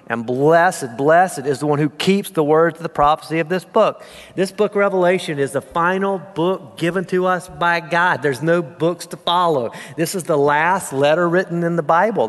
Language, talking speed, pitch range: English, 205 wpm, 140-185 Hz